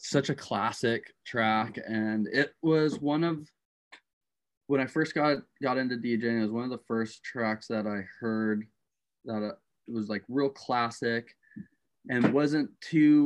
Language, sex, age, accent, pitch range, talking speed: English, male, 20-39, American, 110-130 Hz, 165 wpm